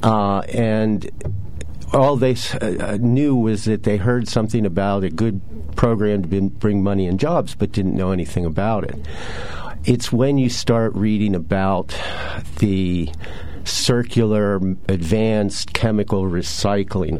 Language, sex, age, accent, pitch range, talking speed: English, male, 50-69, American, 95-115 Hz, 130 wpm